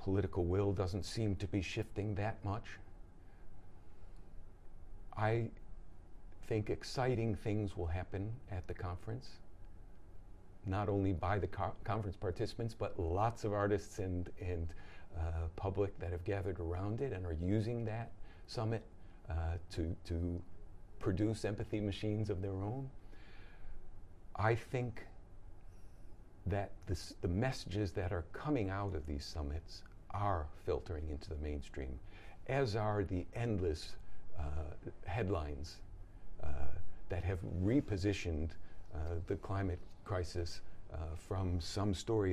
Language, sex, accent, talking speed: English, male, American, 120 wpm